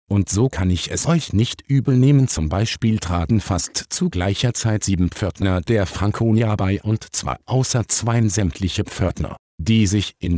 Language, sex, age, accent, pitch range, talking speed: German, male, 50-69, German, 90-120 Hz, 175 wpm